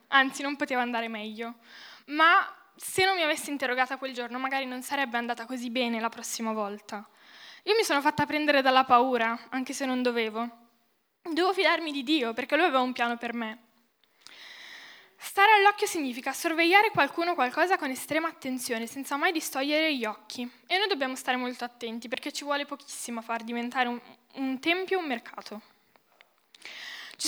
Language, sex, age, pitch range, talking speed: Italian, female, 10-29, 235-310 Hz, 170 wpm